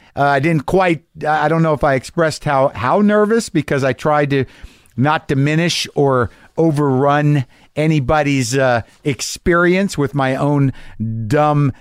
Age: 50-69